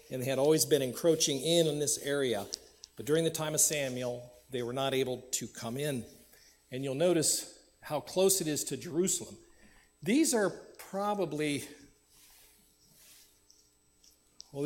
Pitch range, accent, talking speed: 120-155 Hz, American, 145 wpm